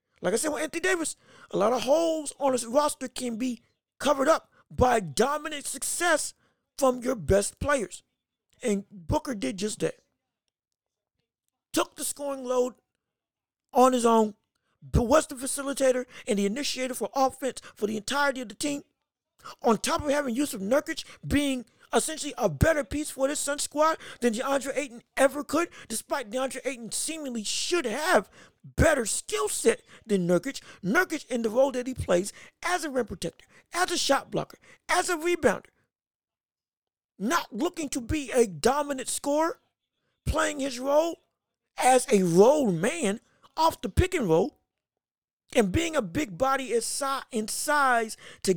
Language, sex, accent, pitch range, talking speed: English, male, American, 240-295 Hz, 155 wpm